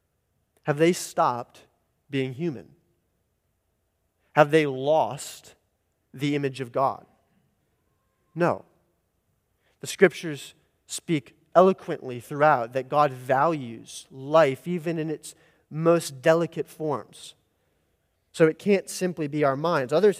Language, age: English, 30-49